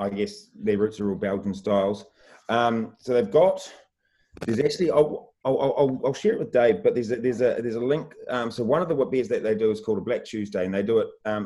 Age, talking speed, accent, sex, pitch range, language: 30-49, 255 wpm, Australian, male, 100-125 Hz, English